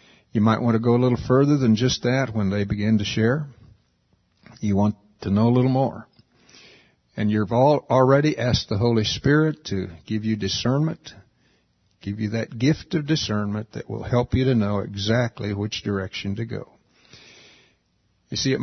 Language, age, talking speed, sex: English, 60-79, 175 wpm, male